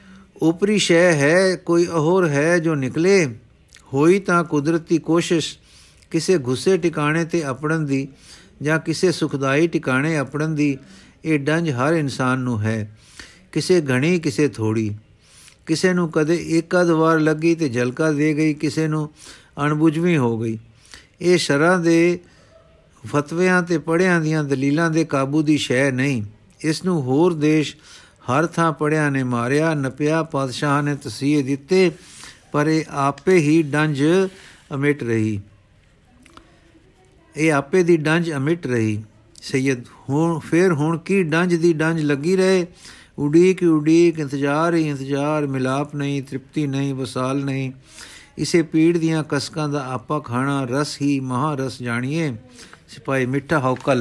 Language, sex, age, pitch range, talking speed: Punjabi, male, 50-69, 135-165 Hz, 135 wpm